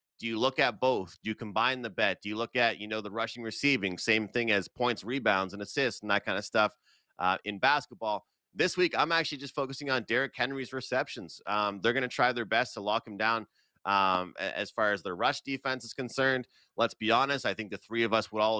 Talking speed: 240 wpm